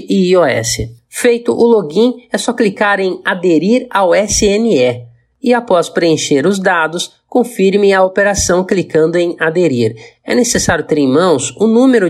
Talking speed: 150 wpm